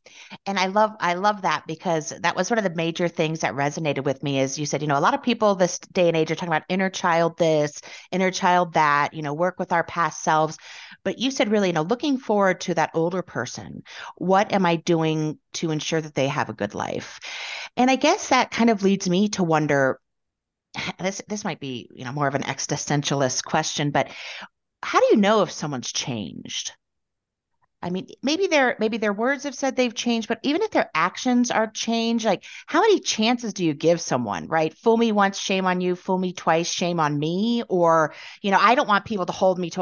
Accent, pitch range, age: American, 160-230 Hz, 30-49